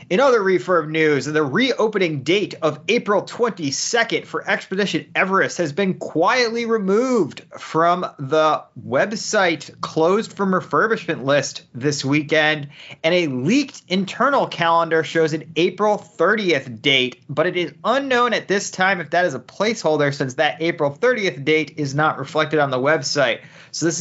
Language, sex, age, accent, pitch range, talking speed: English, male, 30-49, American, 150-195 Hz, 150 wpm